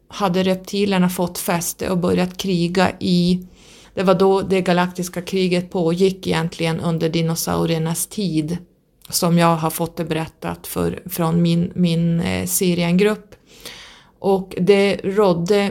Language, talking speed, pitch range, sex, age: Swedish, 125 wpm, 165-185 Hz, female, 30-49